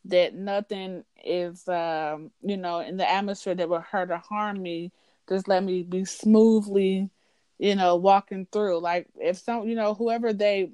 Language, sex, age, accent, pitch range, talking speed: English, female, 20-39, American, 175-200 Hz, 175 wpm